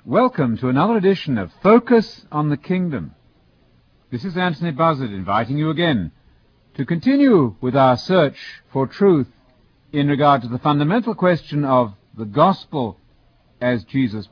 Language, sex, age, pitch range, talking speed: English, male, 60-79, 110-150 Hz, 145 wpm